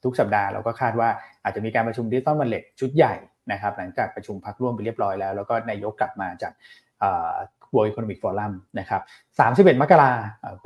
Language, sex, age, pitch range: Thai, male, 20-39, 105-135 Hz